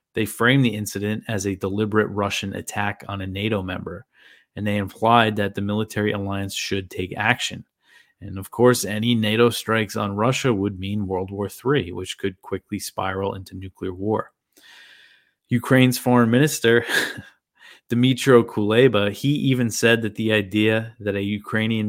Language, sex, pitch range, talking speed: English, male, 100-115 Hz, 155 wpm